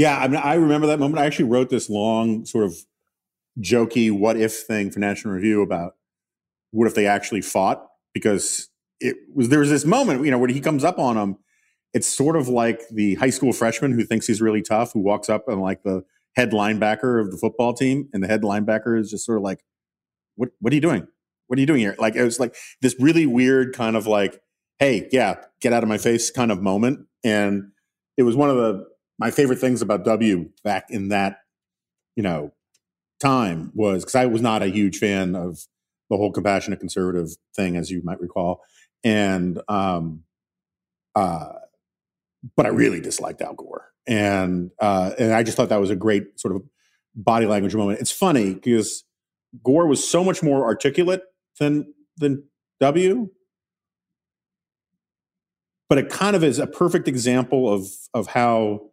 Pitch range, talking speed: 100-130 Hz, 190 wpm